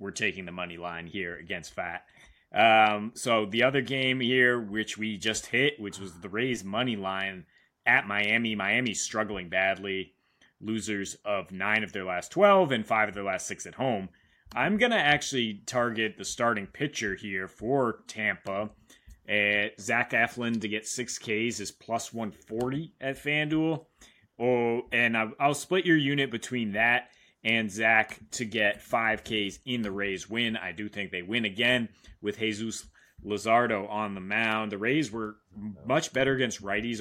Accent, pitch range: American, 100-120 Hz